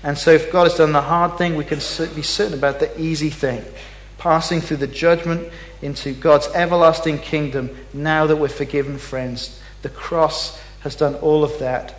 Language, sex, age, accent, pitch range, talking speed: English, male, 40-59, British, 120-160 Hz, 185 wpm